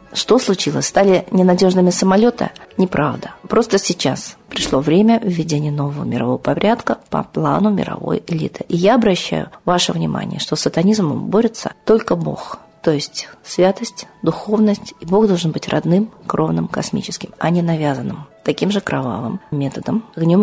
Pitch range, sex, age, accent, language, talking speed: 160-205 Hz, female, 40-59, native, Russian, 140 wpm